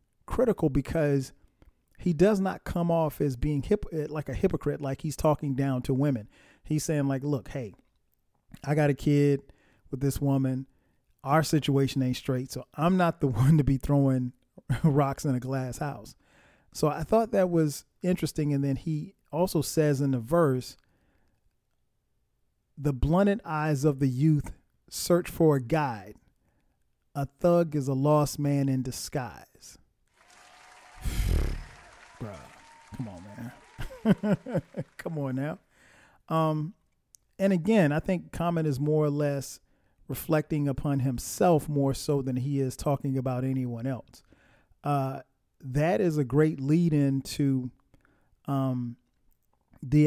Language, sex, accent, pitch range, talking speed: English, male, American, 130-155 Hz, 140 wpm